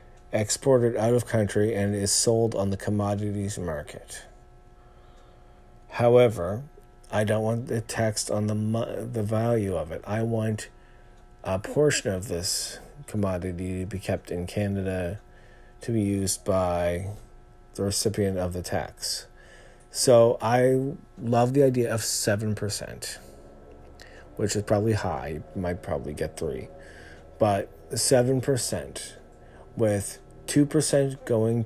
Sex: male